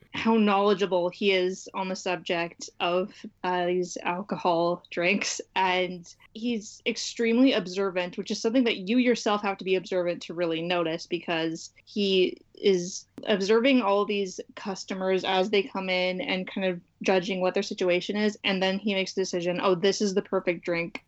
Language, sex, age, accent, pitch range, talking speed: English, female, 20-39, American, 180-210 Hz, 170 wpm